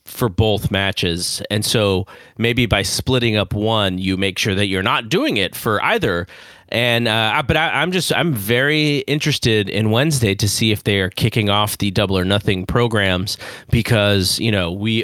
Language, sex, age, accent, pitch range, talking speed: English, male, 30-49, American, 95-120 Hz, 185 wpm